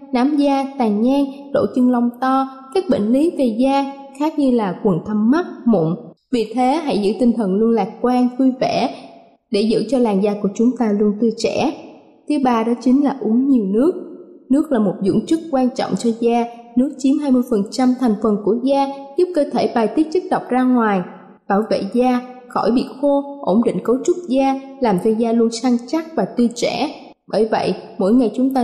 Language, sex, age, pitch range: Thai, female, 20-39, 230-275 Hz